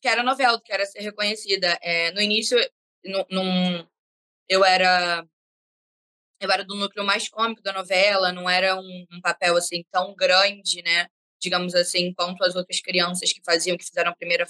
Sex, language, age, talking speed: female, Portuguese, 10-29, 175 wpm